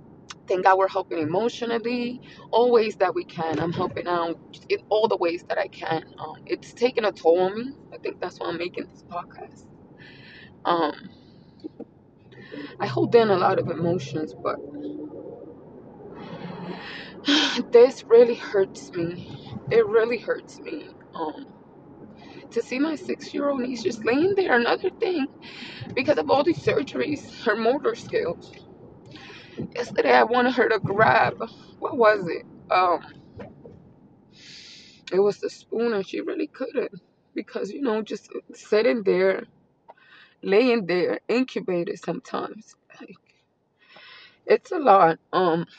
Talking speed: 135 wpm